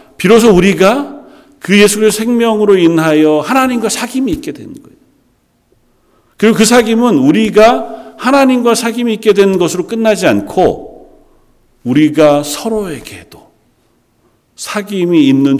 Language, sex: Korean, male